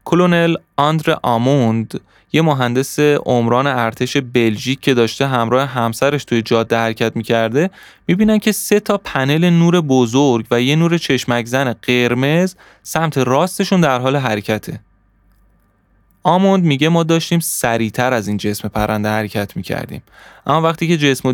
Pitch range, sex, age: 120-155 Hz, male, 20-39